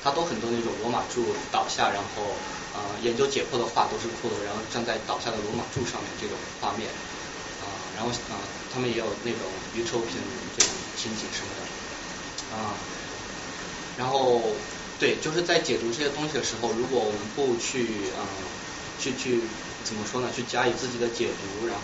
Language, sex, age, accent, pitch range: Chinese, male, 20-39, native, 110-125 Hz